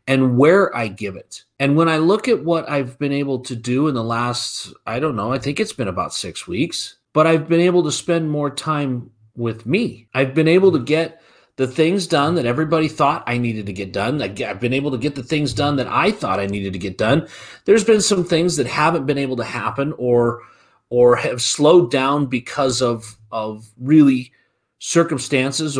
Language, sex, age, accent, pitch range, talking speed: English, male, 30-49, American, 125-165 Hz, 210 wpm